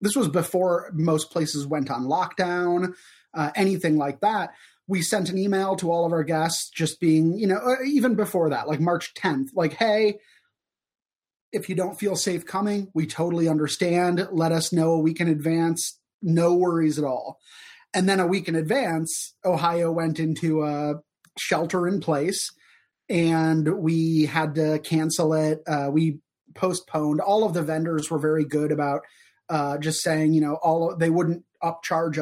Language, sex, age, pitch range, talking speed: English, male, 30-49, 155-180 Hz, 175 wpm